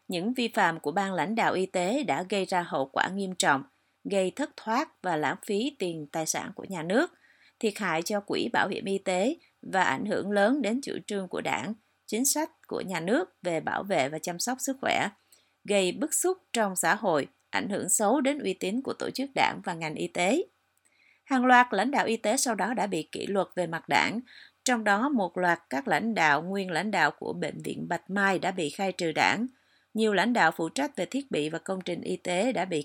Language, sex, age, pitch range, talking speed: Vietnamese, female, 30-49, 185-250 Hz, 235 wpm